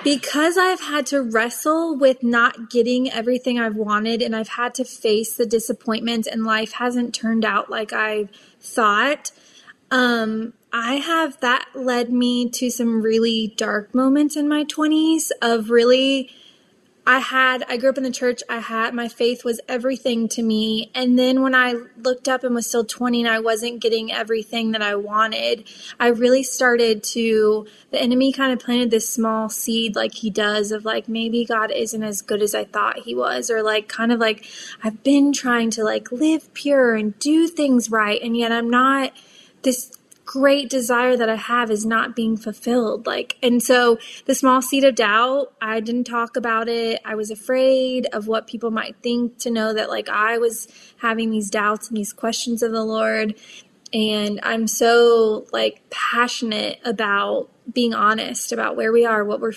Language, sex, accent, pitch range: English, female, American, 220-250 Hz